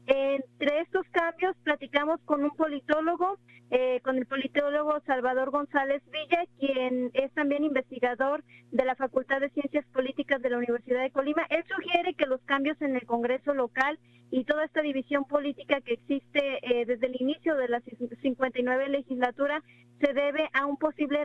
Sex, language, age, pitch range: female, Spanish, 40-59, 260-290 Hz